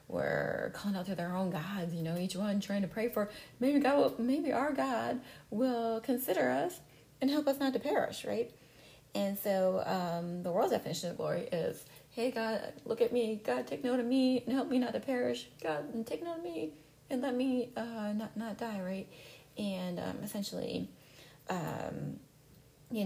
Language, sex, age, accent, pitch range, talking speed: English, female, 30-49, American, 165-235 Hz, 195 wpm